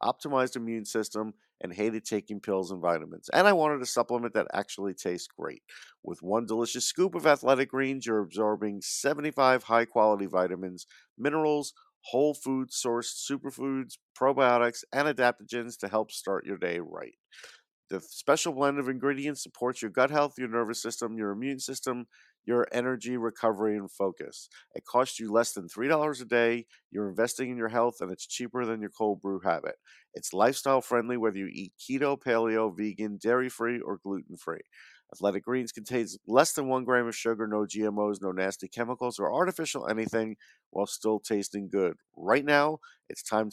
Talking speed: 165 wpm